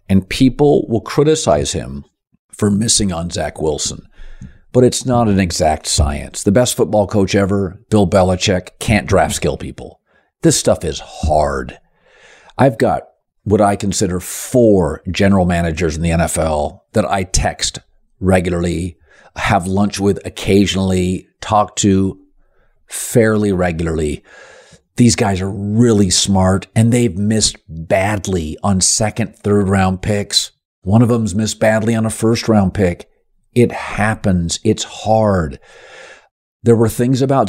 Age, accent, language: 50-69, American, English